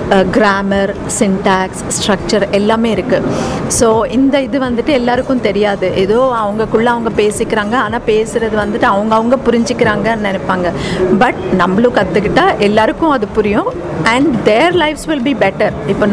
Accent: native